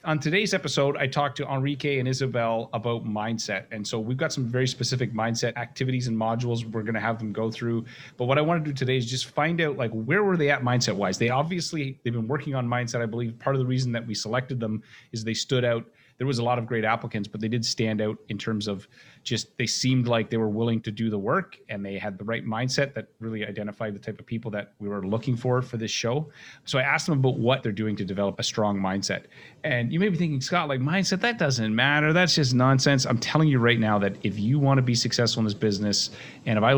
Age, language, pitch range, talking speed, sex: 30-49, English, 110-130 Hz, 260 wpm, male